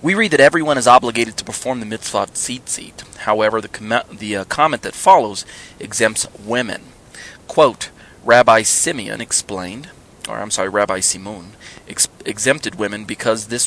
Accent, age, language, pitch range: American, 30-49, English, 100-120 Hz